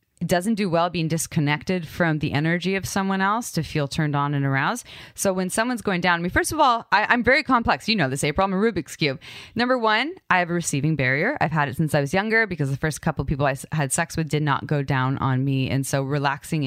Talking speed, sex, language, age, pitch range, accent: 265 wpm, female, English, 20-39, 145-195 Hz, American